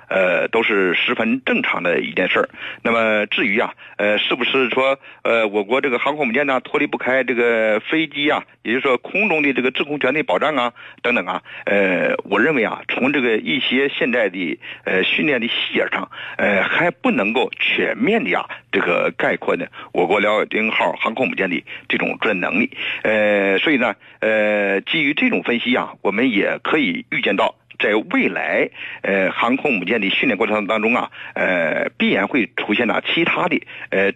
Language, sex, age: Chinese, male, 50-69